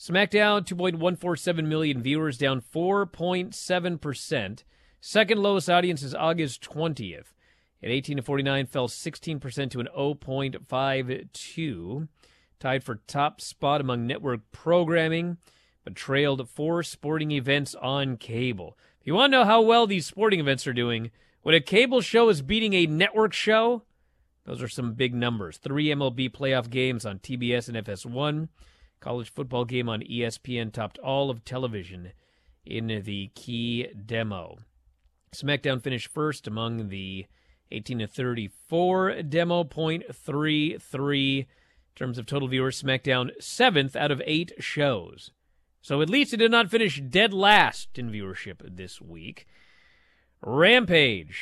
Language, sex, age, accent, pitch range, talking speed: English, male, 40-59, American, 115-160 Hz, 130 wpm